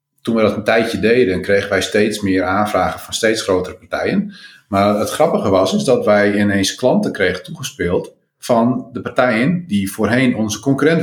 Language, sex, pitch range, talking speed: Dutch, male, 95-130 Hz, 180 wpm